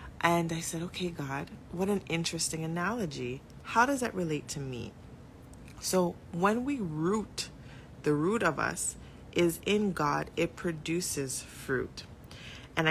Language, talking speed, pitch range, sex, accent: English, 140 wpm, 160-200 Hz, female, American